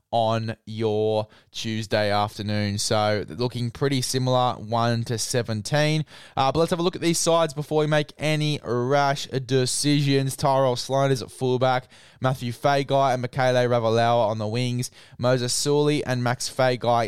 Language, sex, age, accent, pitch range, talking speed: English, male, 20-39, Australian, 115-135 Hz, 155 wpm